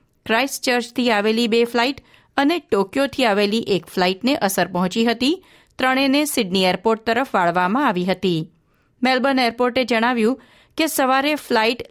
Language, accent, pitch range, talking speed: Gujarati, native, 195-260 Hz, 120 wpm